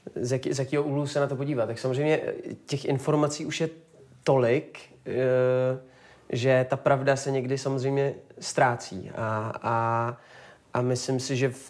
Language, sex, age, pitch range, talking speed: Czech, male, 30-49, 120-135 Hz, 160 wpm